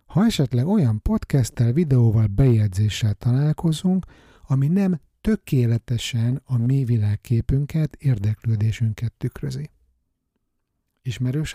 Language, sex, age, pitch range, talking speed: Hungarian, male, 60-79, 105-140 Hz, 85 wpm